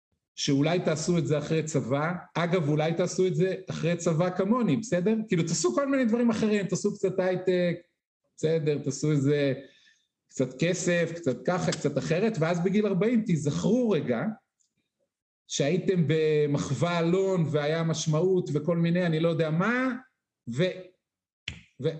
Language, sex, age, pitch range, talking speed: Hebrew, male, 50-69, 150-185 Hz, 140 wpm